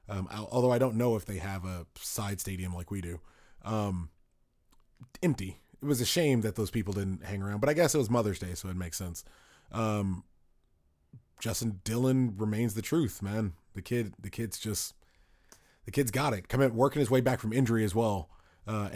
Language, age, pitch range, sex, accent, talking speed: English, 20-39, 100-120 Hz, male, American, 200 wpm